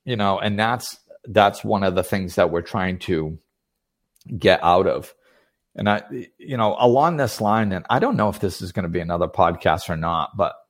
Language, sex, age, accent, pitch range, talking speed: English, male, 40-59, American, 95-115 Hz, 215 wpm